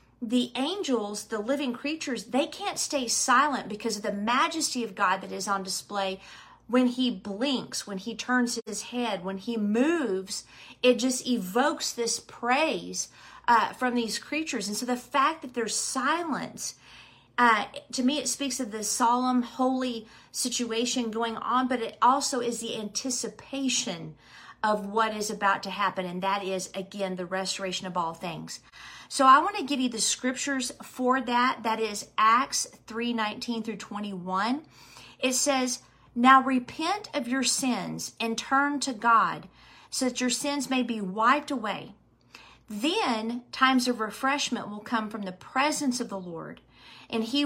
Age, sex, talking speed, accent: 40-59, female, 165 wpm, American